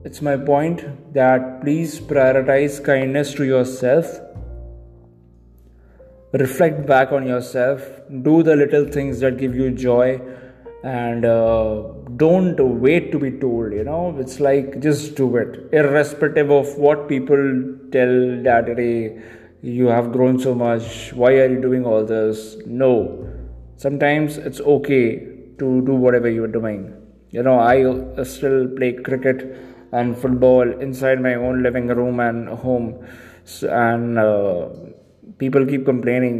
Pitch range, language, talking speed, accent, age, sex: 115-135 Hz, English, 135 wpm, Indian, 20-39, male